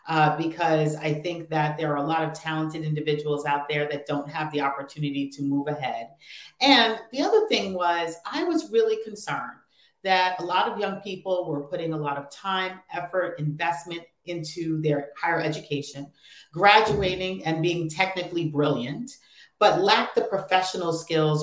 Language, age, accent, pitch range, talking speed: English, 40-59, American, 145-175 Hz, 165 wpm